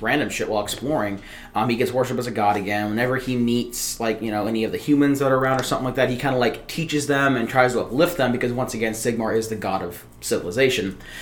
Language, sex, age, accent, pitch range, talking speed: English, male, 20-39, American, 105-125 Hz, 260 wpm